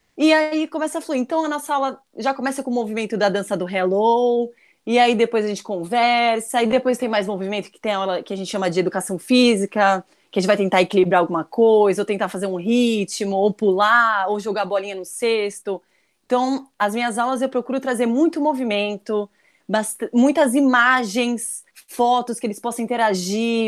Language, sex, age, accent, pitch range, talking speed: Portuguese, female, 20-39, Brazilian, 205-250 Hz, 195 wpm